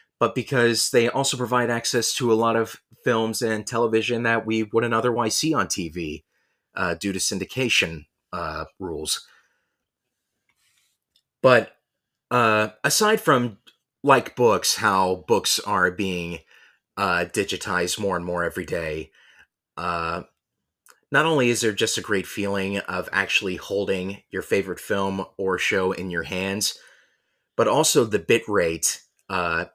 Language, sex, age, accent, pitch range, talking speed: English, male, 30-49, American, 90-115 Hz, 140 wpm